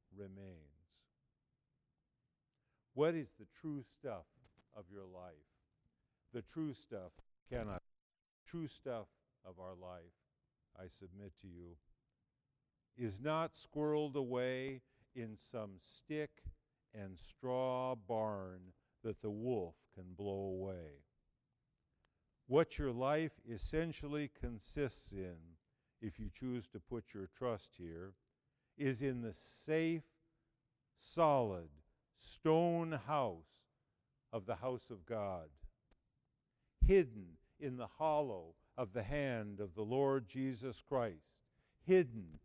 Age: 50-69